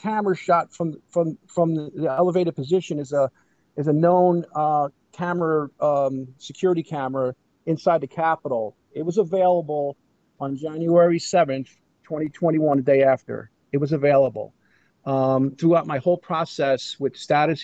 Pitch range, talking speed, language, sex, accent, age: 135-165 Hz, 140 wpm, English, male, American, 50-69